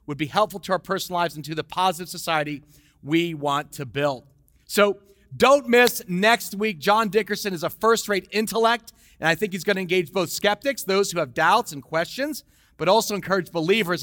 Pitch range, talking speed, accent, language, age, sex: 165-210 Hz, 195 wpm, American, English, 40-59, male